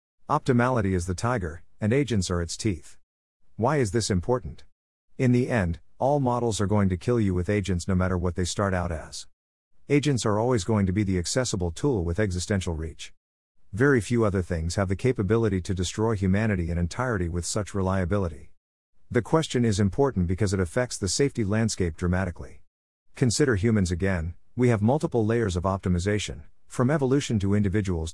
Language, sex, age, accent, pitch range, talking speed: English, male, 50-69, American, 90-115 Hz, 175 wpm